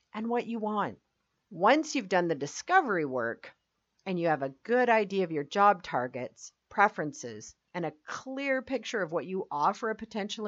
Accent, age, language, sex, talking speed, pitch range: American, 50-69, English, female, 180 wpm, 155-220 Hz